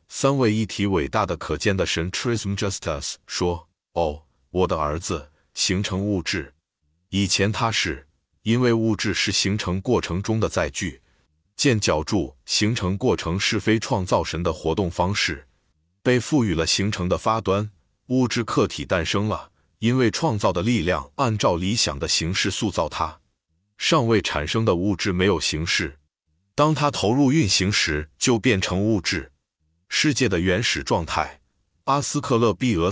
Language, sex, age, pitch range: Chinese, male, 50-69, 85-115 Hz